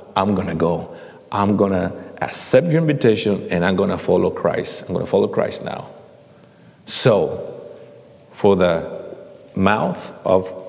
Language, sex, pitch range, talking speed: English, male, 110-155 Hz, 150 wpm